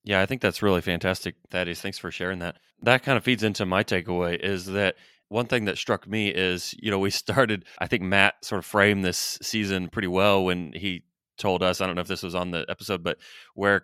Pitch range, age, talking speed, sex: 95-110 Hz, 30-49, 240 wpm, male